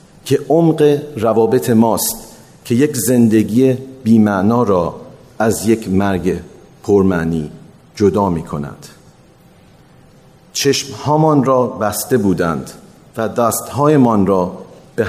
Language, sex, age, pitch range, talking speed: Persian, male, 50-69, 100-130 Hz, 100 wpm